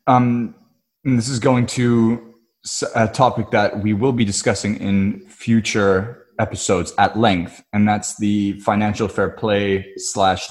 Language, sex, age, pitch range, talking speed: English, male, 20-39, 95-110 Hz, 135 wpm